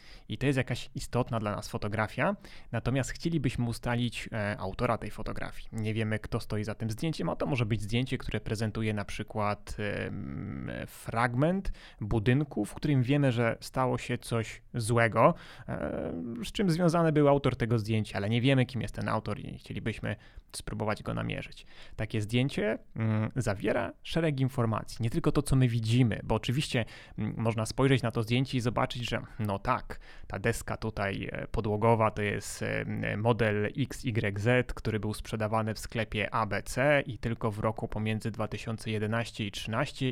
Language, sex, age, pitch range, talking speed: Polish, male, 30-49, 110-130 Hz, 155 wpm